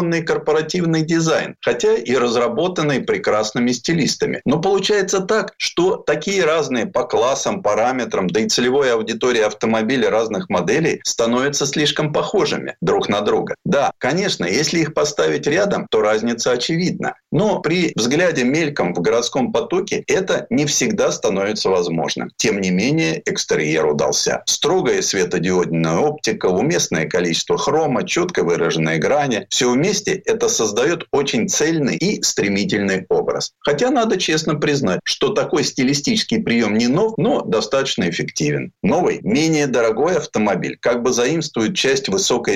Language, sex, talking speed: Russian, male, 135 wpm